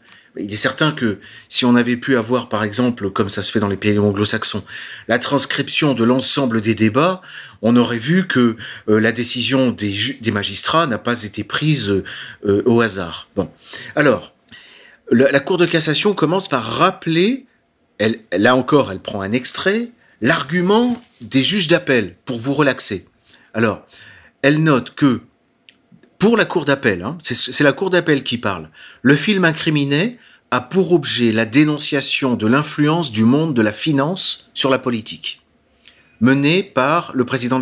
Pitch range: 110-155 Hz